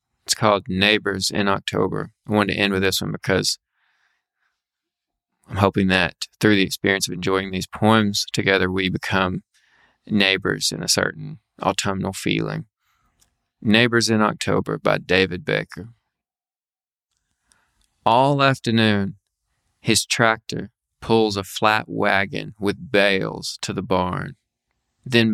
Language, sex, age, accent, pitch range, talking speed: English, male, 20-39, American, 95-115 Hz, 125 wpm